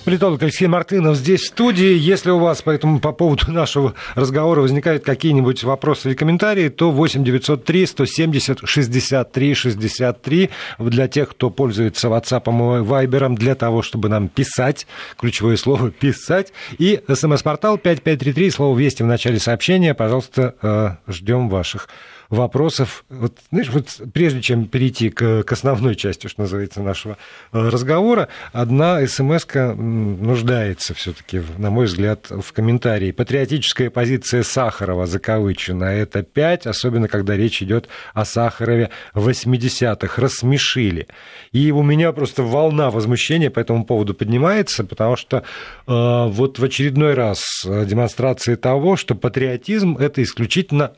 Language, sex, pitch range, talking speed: Russian, male, 115-145 Hz, 135 wpm